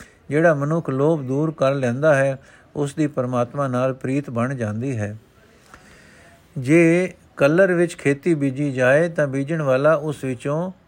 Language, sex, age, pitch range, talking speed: Punjabi, male, 50-69, 125-155 Hz, 145 wpm